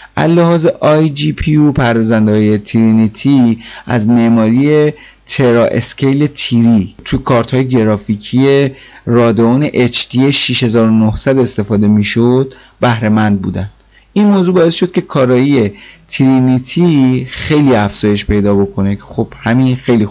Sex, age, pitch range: male, 30-49, 110-140 Hz